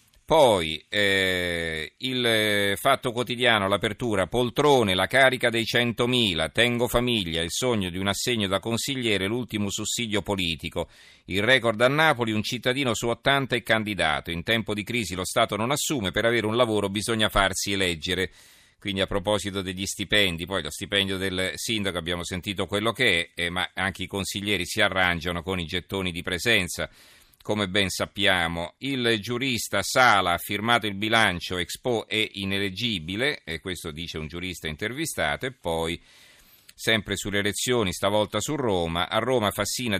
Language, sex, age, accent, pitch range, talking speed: Italian, male, 40-59, native, 95-115 Hz, 160 wpm